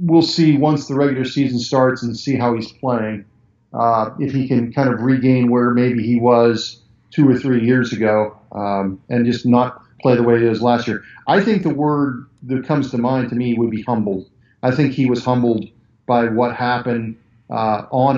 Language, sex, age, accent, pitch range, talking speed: English, male, 40-59, American, 115-135 Hz, 205 wpm